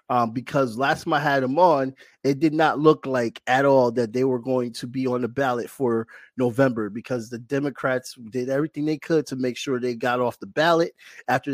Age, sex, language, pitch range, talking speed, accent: 30-49, male, English, 125-150 Hz, 220 wpm, American